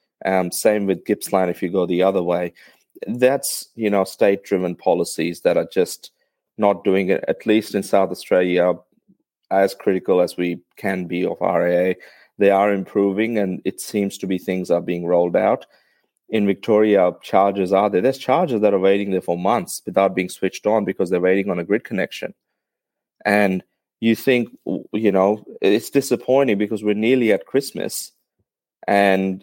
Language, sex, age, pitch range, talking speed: English, male, 30-49, 90-105 Hz, 170 wpm